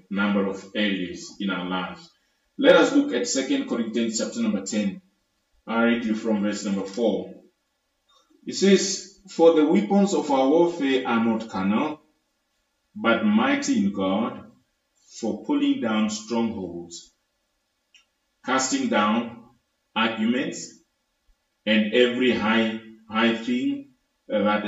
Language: English